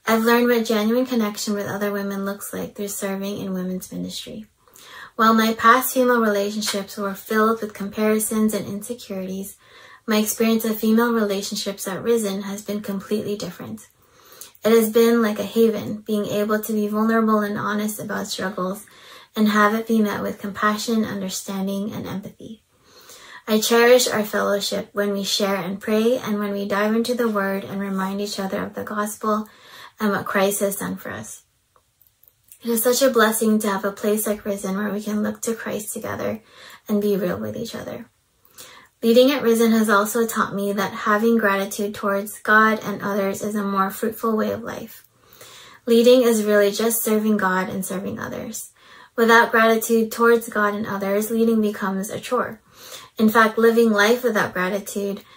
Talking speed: 175 wpm